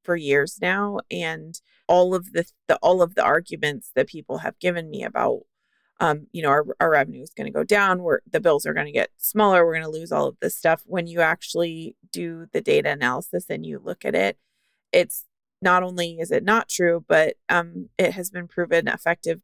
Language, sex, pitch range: English, female, 170-210 Hz